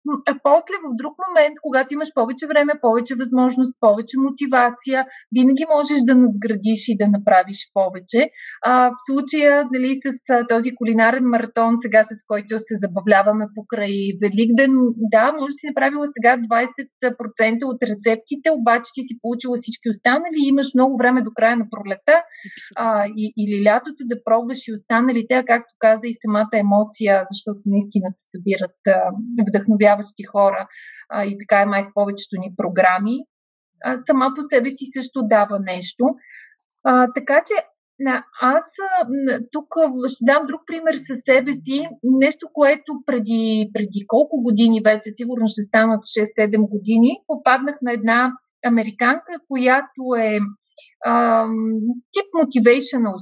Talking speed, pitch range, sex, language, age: 150 wpm, 215-270 Hz, female, Bulgarian, 30-49